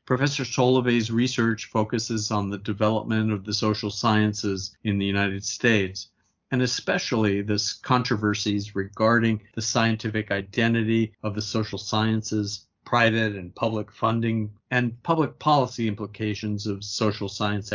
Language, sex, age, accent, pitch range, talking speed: English, male, 50-69, American, 105-120 Hz, 130 wpm